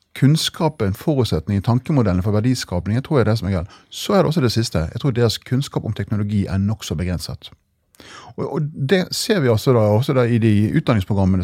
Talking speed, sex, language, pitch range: 200 wpm, male, English, 100-130 Hz